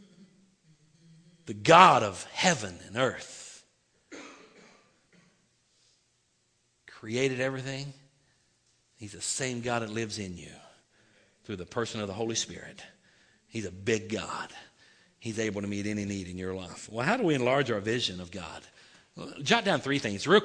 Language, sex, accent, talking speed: English, male, American, 150 wpm